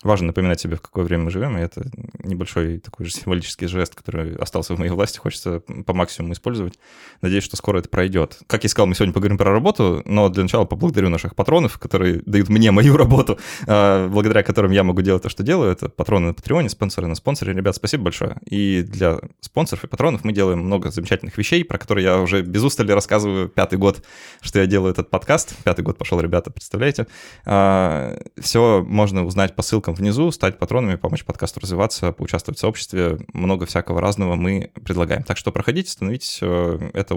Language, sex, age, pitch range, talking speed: Russian, male, 20-39, 90-110 Hz, 195 wpm